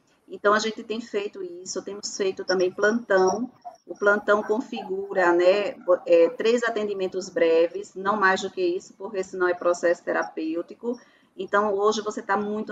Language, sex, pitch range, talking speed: Portuguese, female, 180-210 Hz, 155 wpm